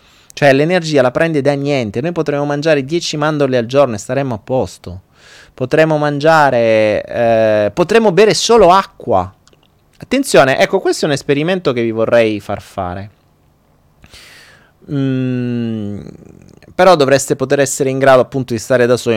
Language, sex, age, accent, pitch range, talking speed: Italian, male, 30-49, native, 115-195 Hz, 145 wpm